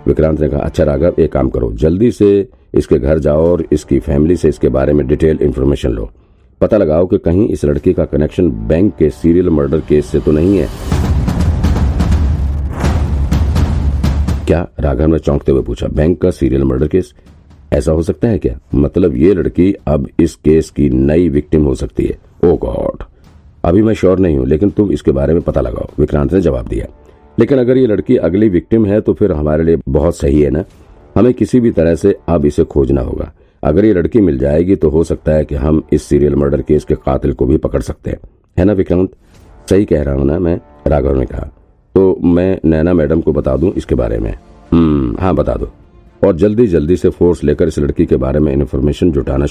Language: Hindi